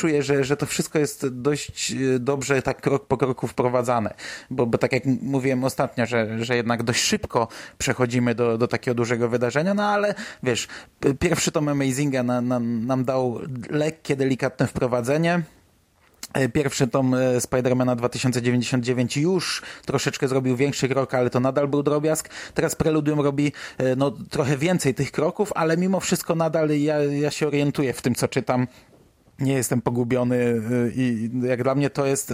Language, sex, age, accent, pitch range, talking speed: Polish, male, 30-49, native, 120-145 Hz, 160 wpm